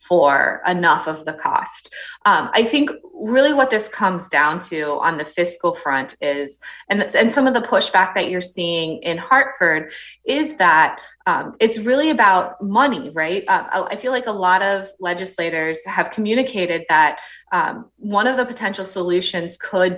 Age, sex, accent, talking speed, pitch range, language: 20-39, female, American, 170 wpm, 165-220 Hz, English